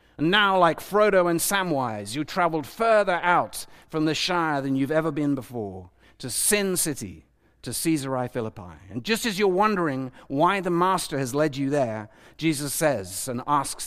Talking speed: 175 wpm